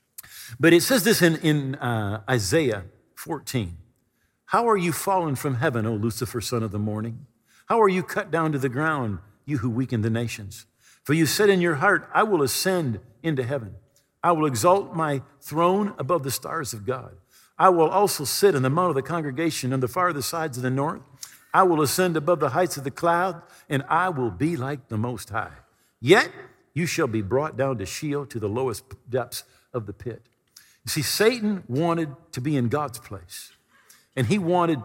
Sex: male